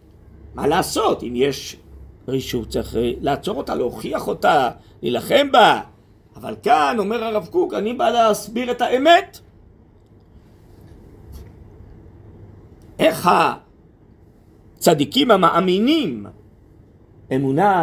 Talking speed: 90 wpm